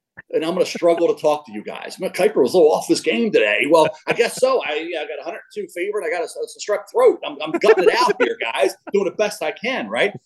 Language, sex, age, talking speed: English, male, 40-59, 275 wpm